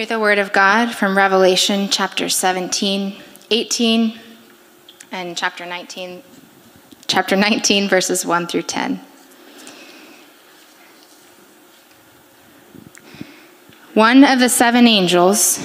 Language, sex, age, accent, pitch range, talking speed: English, female, 20-39, American, 190-270 Hz, 90 wpm